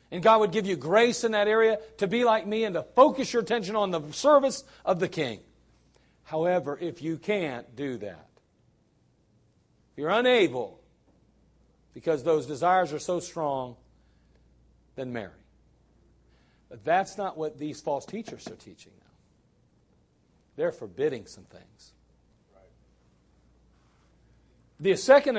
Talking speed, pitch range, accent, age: 135 wpm, 135-210 Hz, American, 50-69